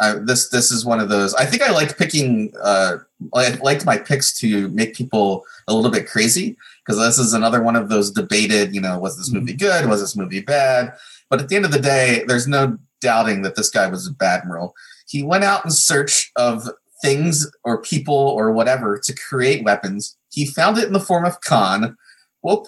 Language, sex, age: English, male, 30-49